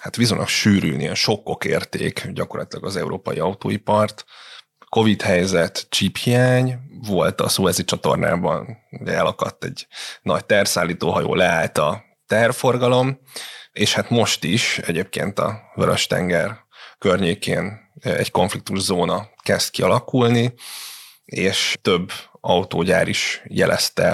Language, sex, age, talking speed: Hungarian, male, 30-49, 100 wpm